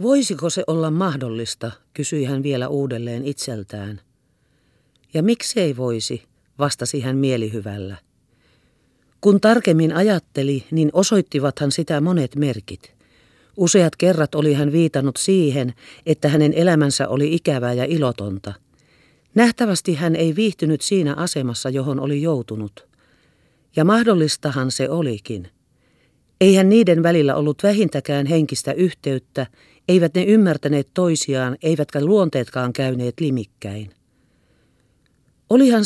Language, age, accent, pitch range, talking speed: Finnish, 40-59, native, 125-170 Hz, 110 wpm